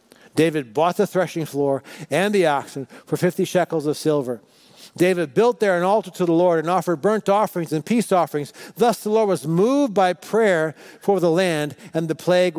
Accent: American